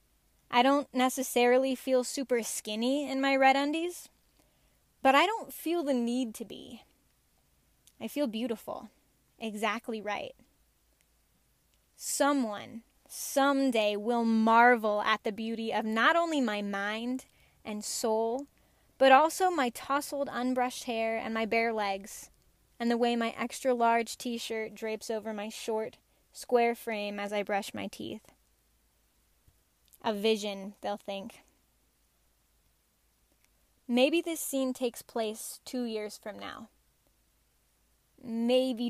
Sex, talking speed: female, 120 wpm